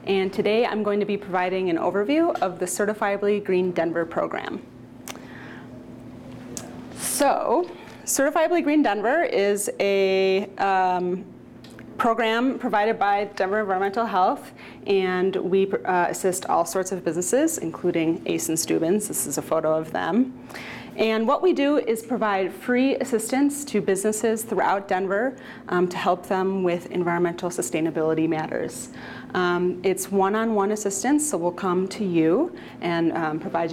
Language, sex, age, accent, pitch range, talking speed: English, female, 30-49, American, 185-230 Hz, 140 wpm